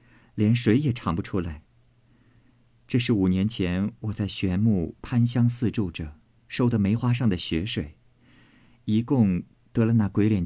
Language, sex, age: Chinese, male, 50-69